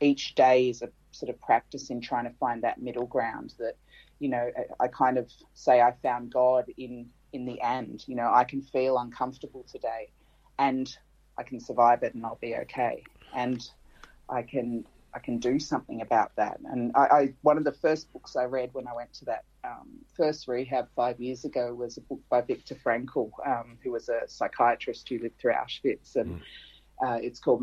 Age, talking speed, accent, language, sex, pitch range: 30-49, 200 wpm, Australian, English, female, 120-135 Hz